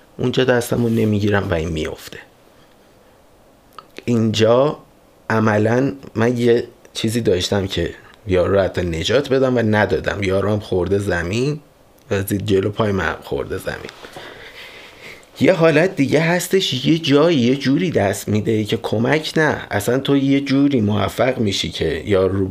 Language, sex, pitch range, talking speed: Persian, male, 95-120 Hz, 140 wpm